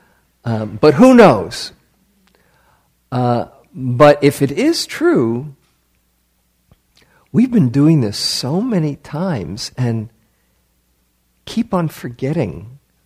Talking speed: 95 wpm